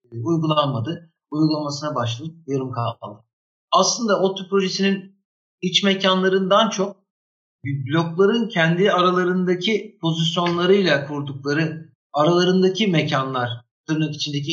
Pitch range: 135-175 Hz